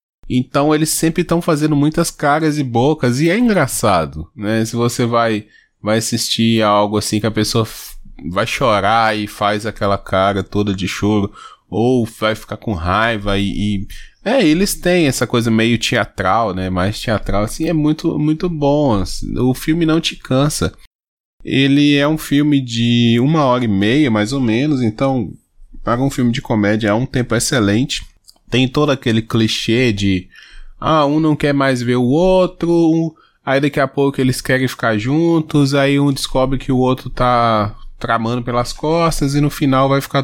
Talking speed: 180 wpm